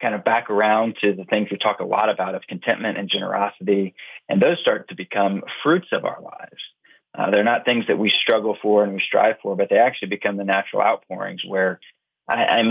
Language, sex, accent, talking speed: English, male, American, 215 wpm